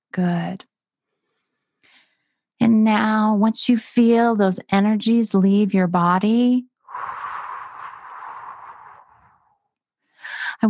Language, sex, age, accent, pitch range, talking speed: English, female, 30-49, American, 170-215 Hz, 65 wpm